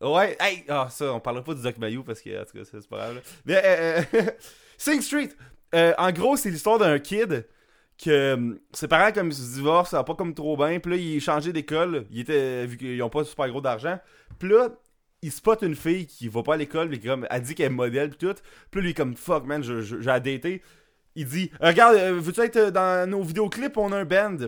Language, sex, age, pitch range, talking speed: French, male, 20-39, 145-195 Hz, 250 wpm